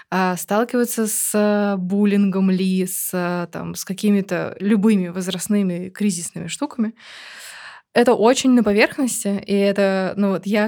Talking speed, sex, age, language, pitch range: 125 wpm, female, 20-39, Russian, 185-220 Hz